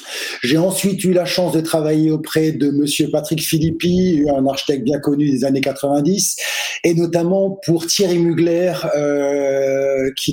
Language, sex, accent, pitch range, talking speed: French, male, French, 130-165 Hz, 150 wpm